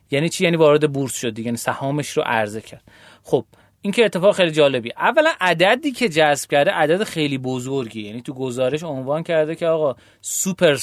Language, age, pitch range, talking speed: Persian, 30-49, 135-195 Hz, 190 wpm